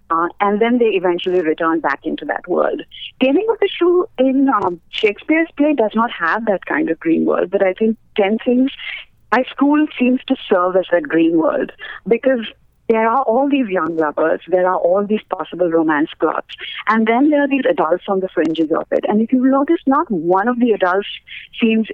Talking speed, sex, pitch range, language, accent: 205 wpm, female, 185-270 Hz, English, Indian